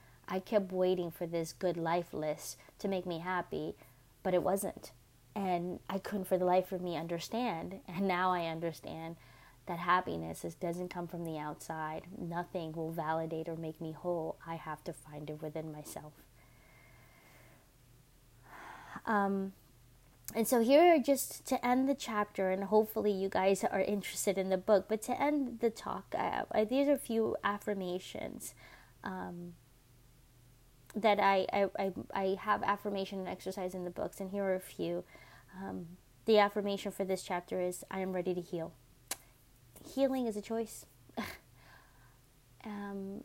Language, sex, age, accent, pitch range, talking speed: English, female, 20-39, American, 165-205 Hz, 155 wpm